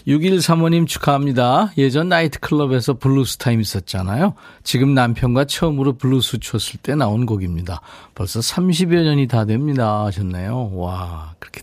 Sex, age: male, 40-59